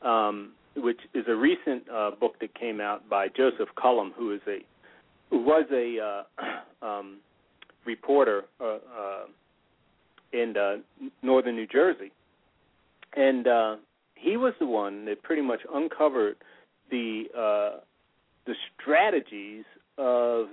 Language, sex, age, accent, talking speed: English, male, 40-59, American, 130 wpm